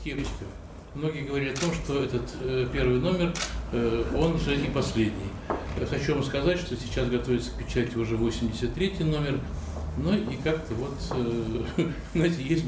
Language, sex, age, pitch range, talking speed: Russian, male, 60-79, 120-160 Hz, 135 wpm